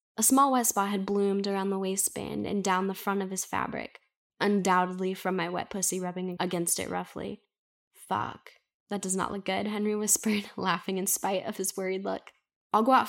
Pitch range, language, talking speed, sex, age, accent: 180-215 Hz, English, 195 wpm, female, 10-29, American